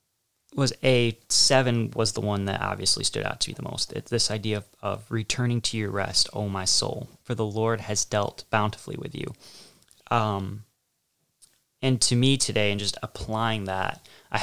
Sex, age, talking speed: male, 20-39, 185 wpm